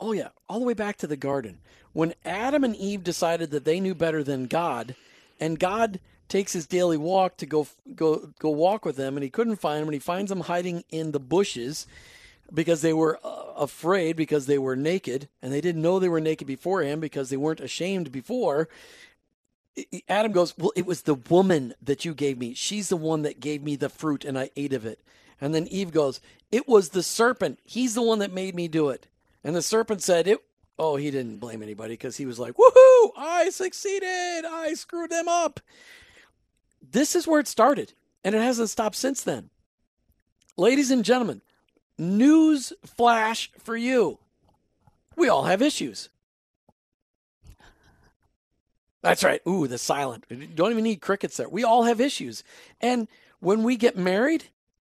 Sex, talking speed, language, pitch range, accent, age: male, 185 wpm, English, 155-240 Hz, American, 40-59